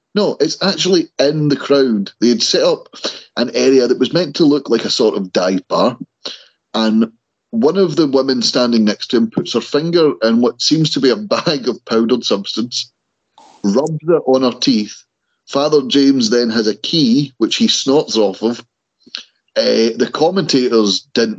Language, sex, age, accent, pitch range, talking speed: English, male, 30-49, British, 105-140 Hz, 180 wpm